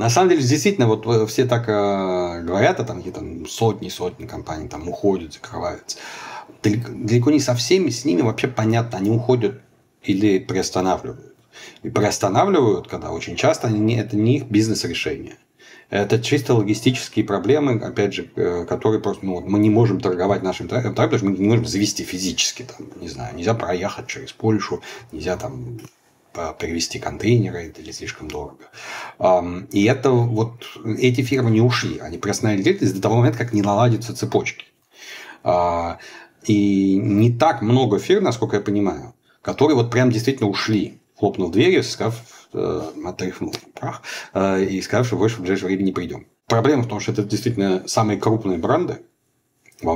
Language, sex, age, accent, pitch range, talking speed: Russian, male, 40-59, native, 95-120 Hz, 155 wpm